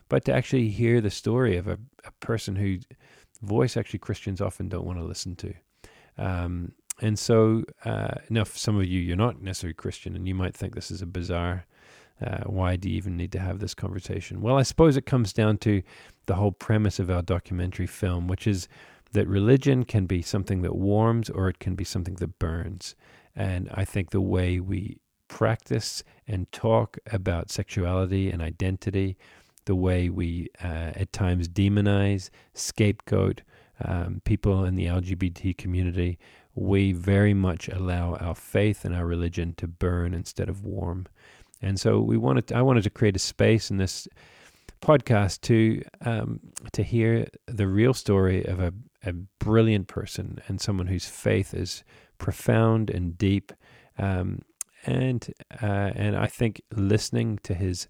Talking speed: 170 wpm